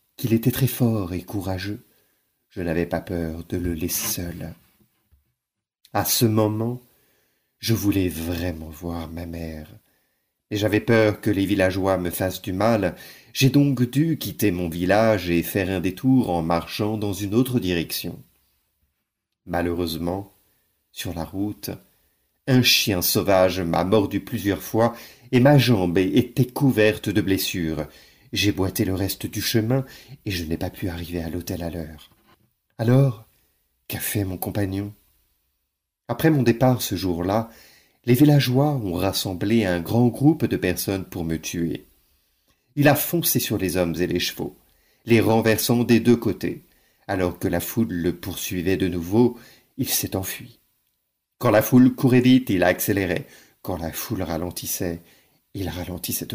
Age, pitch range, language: 50-69, 85-115 Hz, French